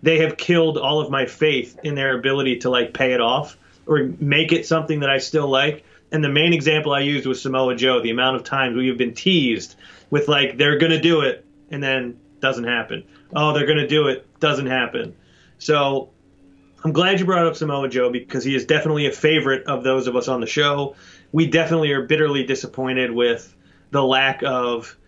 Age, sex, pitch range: 30-49, male, 125-155 Hz